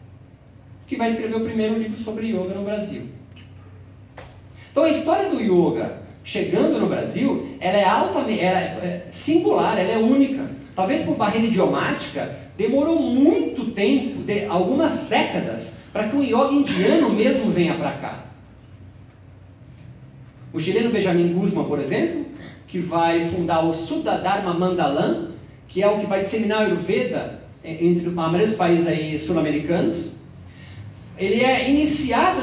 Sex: male